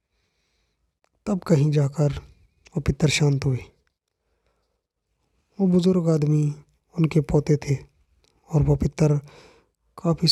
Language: Hindi